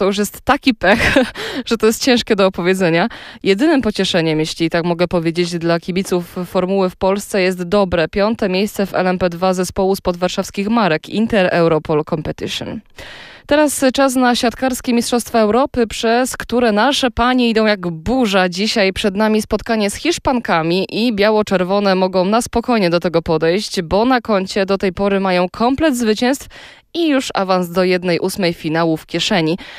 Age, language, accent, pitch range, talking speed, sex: 20-39, Polish, native, 180-230 Hz, 160 wpm, female